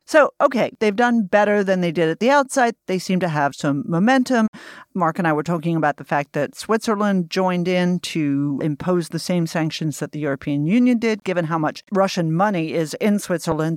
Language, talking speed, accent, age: English, 205 wpm, American, 50-69